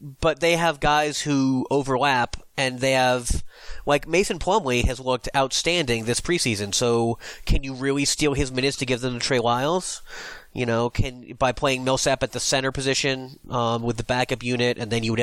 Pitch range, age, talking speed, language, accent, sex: 120-145 Hz, 30-49, 195 wpm, English, American, male